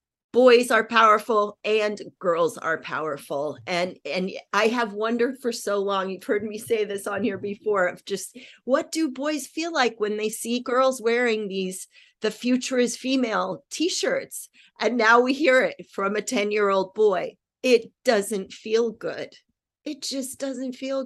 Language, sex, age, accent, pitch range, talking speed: English, female, 40-59, American, 195-260 Hz, 165 wpm